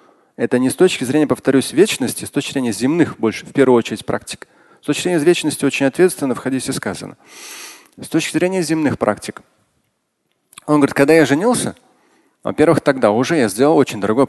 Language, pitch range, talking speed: Russian, 120-160 Hz, 175 wpm